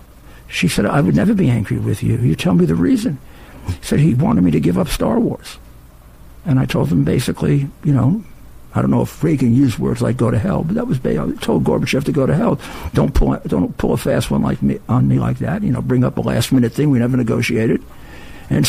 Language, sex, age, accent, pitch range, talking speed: English, male, 60-79, American, 110-130 Hz, 250 wpm